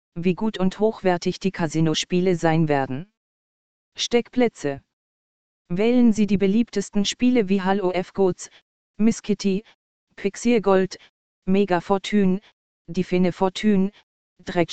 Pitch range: 175-200 Hz